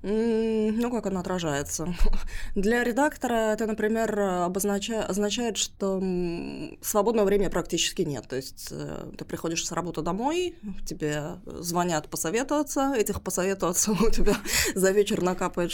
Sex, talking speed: female, 120 wpm